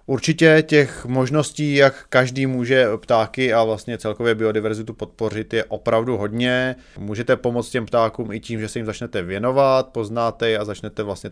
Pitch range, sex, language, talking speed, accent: 100-110 Hz, male, Czech, 165 wpm, native